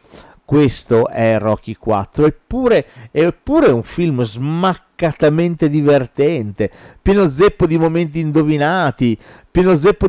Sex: male